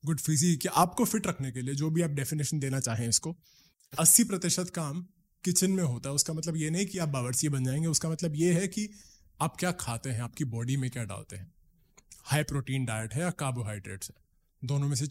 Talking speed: 95 wpm